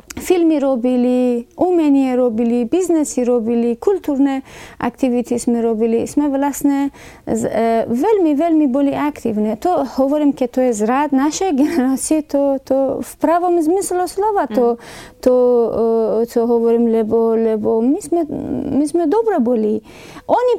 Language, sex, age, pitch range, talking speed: Slovak, female, 30-49, 235-290 Hz, 130 wpm